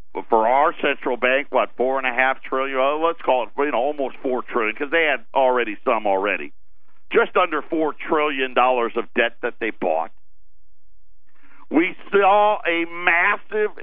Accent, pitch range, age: American, 115-165 Hz, 50-69